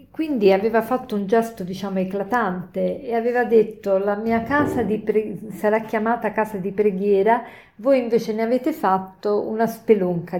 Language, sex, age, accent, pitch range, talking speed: Italian, female, 50-69, native, 190-240 Hz, 155 wpm